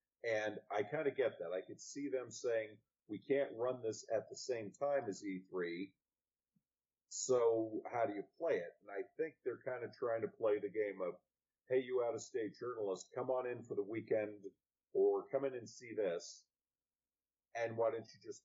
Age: 50-69